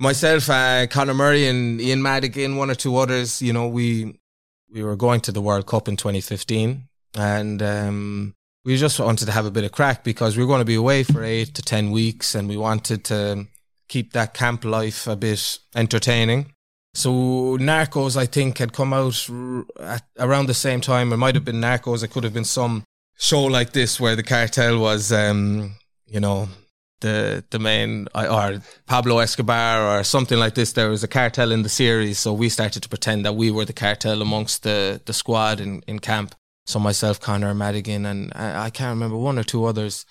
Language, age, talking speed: English, 20-39, 205 wpm